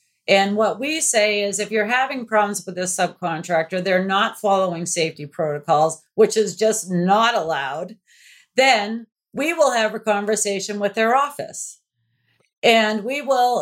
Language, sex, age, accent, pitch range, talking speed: English, female, 40-59, American, 185-225 Hz, 150 wpm